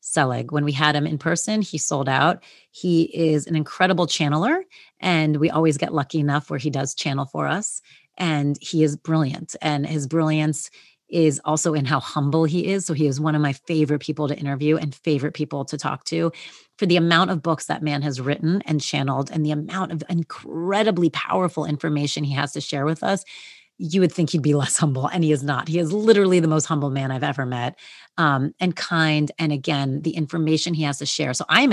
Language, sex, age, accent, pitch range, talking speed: English, female, 30-49, American, 145-165 Hz, 220 wpm